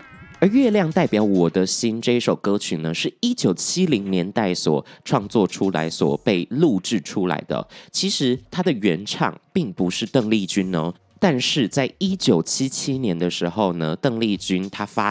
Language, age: Chinese, 20-39